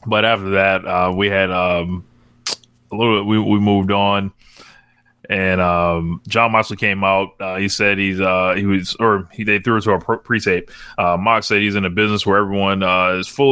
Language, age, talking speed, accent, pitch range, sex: English, 20-39, 210 wpm, American, 95-110 Hz, male